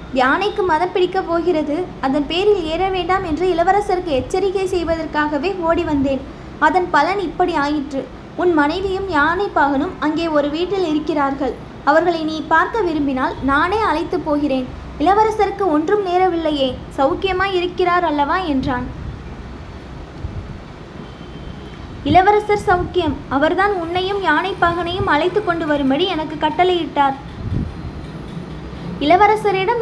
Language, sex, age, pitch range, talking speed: Tamil, female, 20-39, 295-380 Hz, 105 wpm